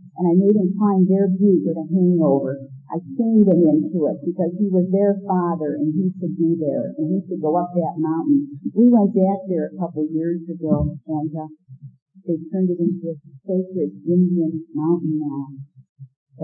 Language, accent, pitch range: English, American, 155-195 Hz